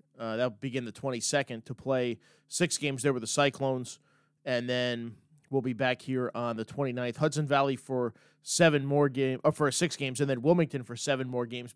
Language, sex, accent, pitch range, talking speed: English, male, American, 125-150 Hz, 210 wpm